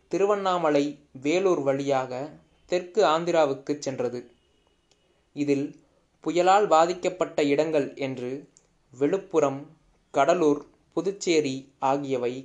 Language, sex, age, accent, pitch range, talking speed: Tamil, male, 20-39, native, 135-170 Hz, 70 wpm